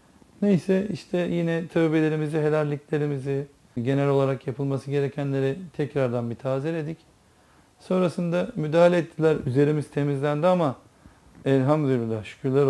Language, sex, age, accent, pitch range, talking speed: Turkish, male, 40-59, native, 130-155 Hz, 95 wpm